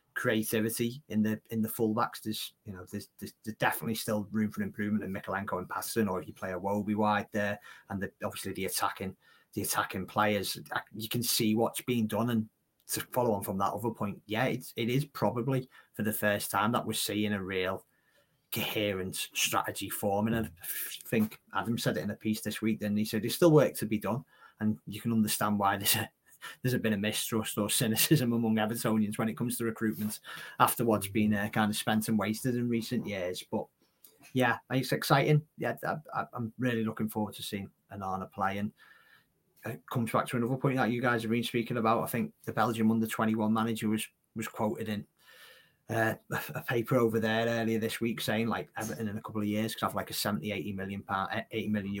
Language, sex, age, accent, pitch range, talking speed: English, male, 30-49, British, 105-115 Hz, 210 wpm